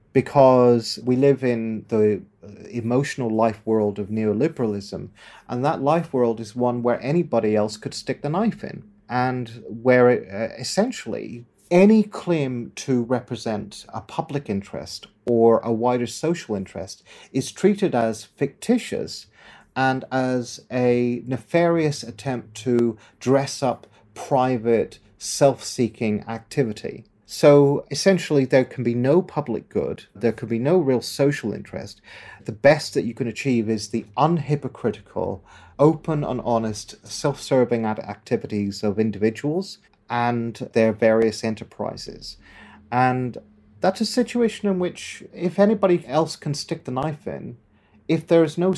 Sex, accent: male, British